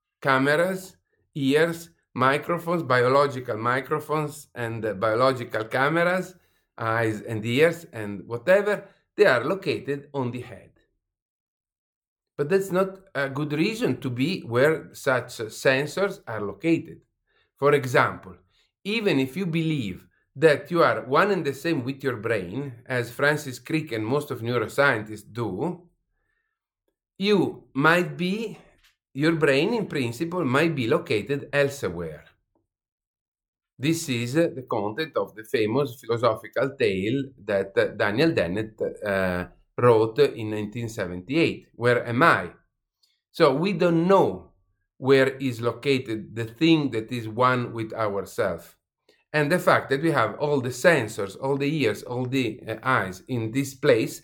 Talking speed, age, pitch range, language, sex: 130 wpm, 50-69, 115-165 Hz, English, male